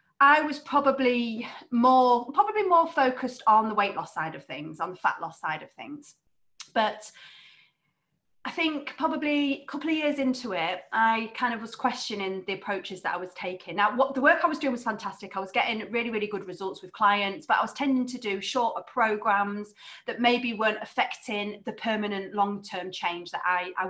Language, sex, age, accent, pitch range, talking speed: English, female, 30-49, British, 180-235 Hz, 200 wpm